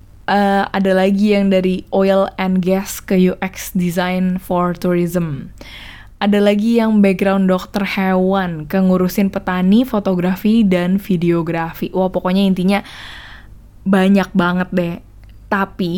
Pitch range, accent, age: 175-200 Hz, native, 20-39